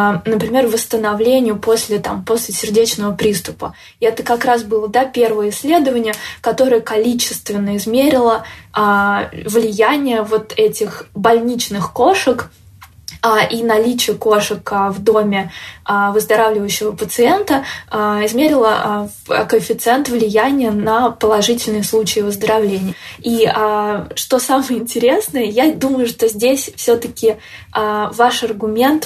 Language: Russian